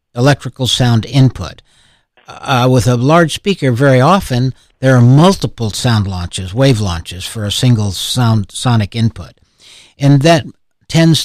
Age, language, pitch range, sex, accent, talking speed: 60-79, English, 110-140 Hz, male, American, 140 wpm